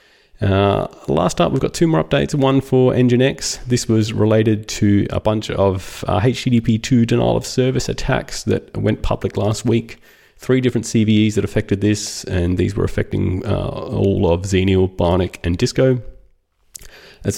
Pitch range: 95-115 Hz